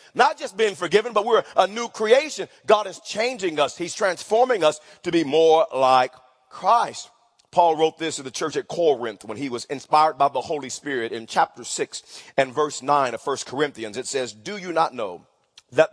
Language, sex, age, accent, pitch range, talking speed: English, male, 40-59, American, 155-240 Hz, 200 wpm